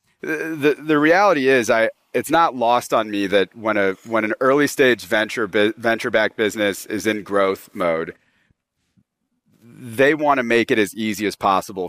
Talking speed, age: 175 wpm, 30-49